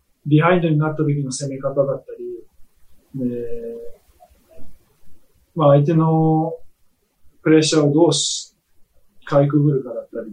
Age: 20-39